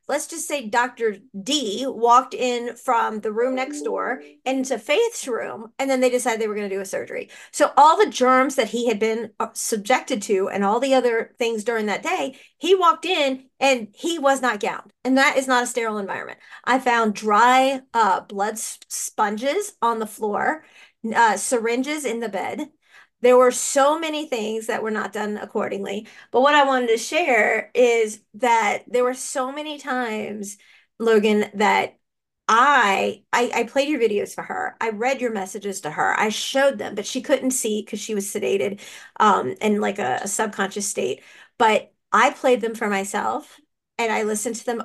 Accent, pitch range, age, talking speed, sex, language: American, 215-270 Hz, 40-59, 190 wpm, female, English